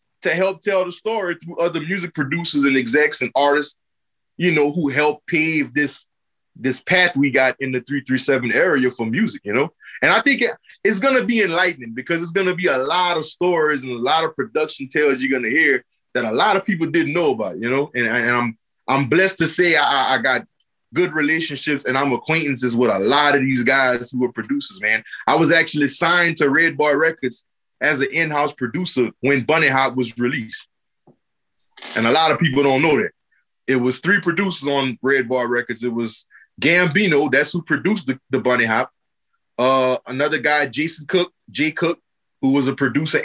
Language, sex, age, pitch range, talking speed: English, male, 20-39, 130-170 Hz, 205 wpm